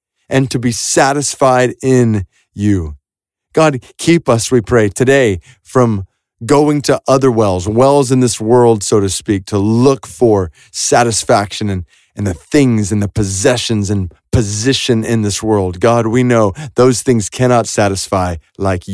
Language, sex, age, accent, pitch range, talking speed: English, male, 30-49, American, 95-125 Hz, 150 wpm